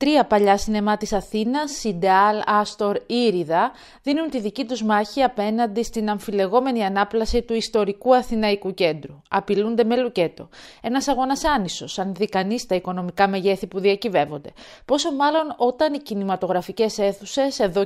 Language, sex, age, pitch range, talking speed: Greek, female, 30-49, 190-245 Hz, 140 wpm